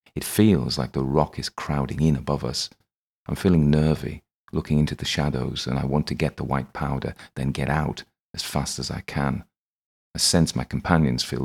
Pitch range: 70-80 Hz